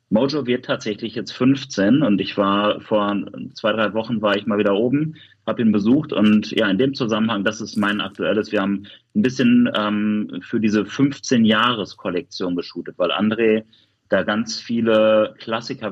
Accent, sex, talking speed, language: German, male, 165 wpm, German